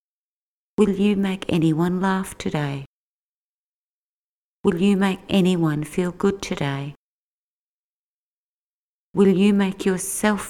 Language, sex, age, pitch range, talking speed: English, female, 50-69, 160-190 Hz, 95 wpm